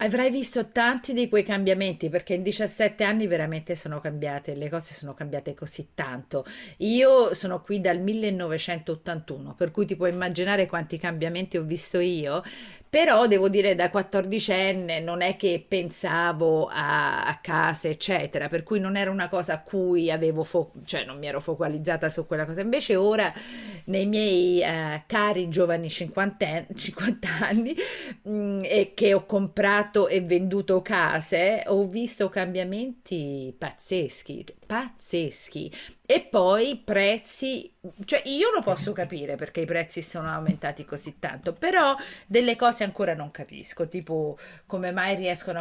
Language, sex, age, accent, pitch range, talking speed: Italian, female, 40-59, native, 170-210 Hz, 150 wpm